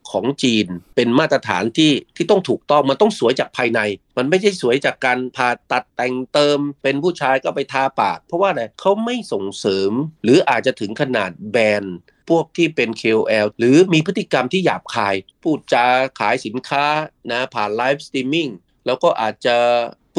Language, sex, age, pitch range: Thai, male, 30-49, 120-155 Hz